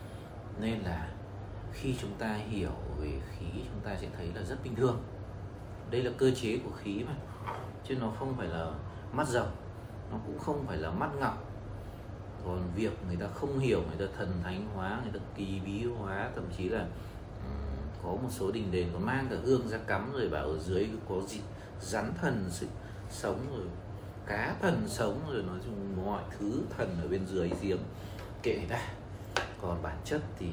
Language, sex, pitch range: English, male, 95-110 Hz